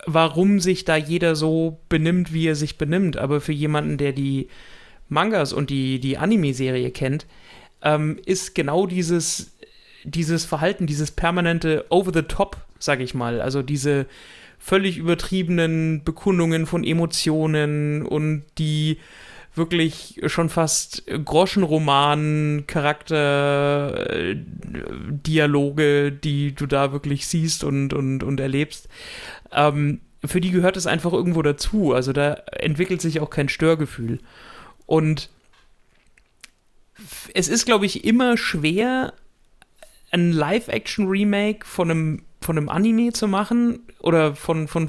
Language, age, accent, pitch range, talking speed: German, 30-49, German, 145-180 Hz, 120 wpm